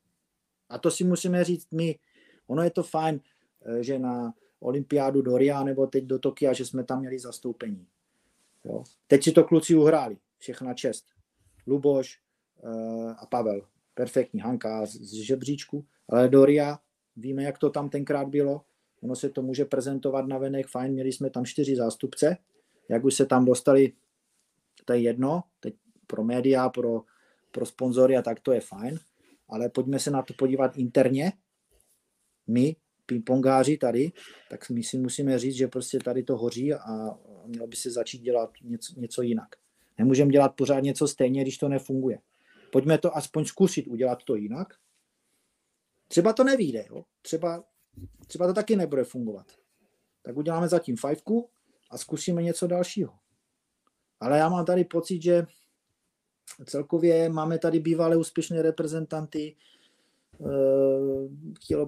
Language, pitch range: Czech, 130-160 Hz